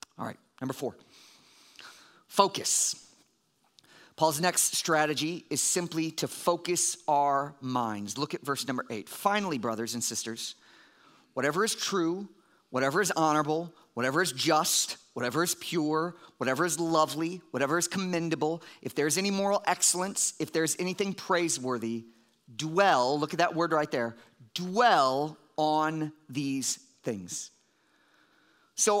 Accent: American